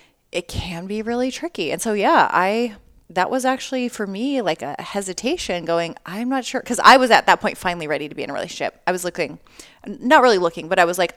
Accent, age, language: American, 30-49, English